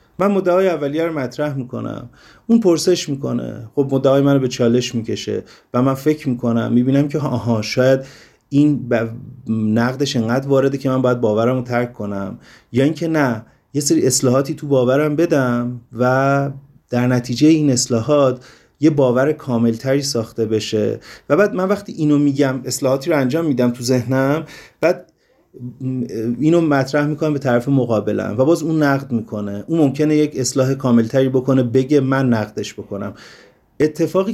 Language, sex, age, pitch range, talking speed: Persian, male, 30-49, 115-145 Hz, 155 wpm